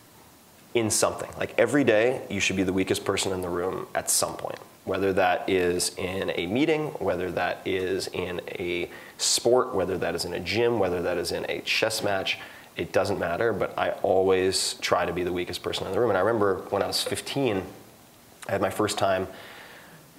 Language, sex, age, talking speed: English, male, 30-49, 205 wpm